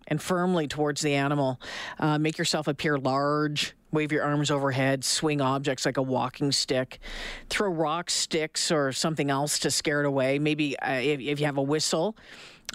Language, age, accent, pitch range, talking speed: English, 40-59, American, 145-190 Hz, 180 wpm